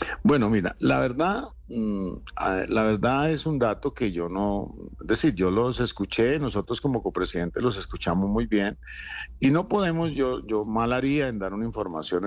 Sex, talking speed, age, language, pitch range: male, 170 wpm, 50-69, Spanish, 100-130 Hz